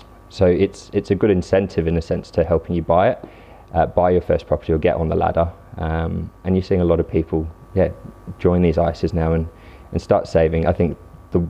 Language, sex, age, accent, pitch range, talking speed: English, male, 20-39, British, 80-90 Hz, 230 wpm